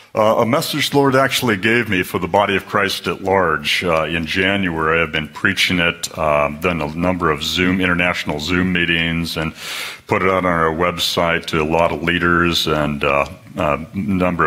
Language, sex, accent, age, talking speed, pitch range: English, male, American, 60-79, 190 wpm, 80-95 Hz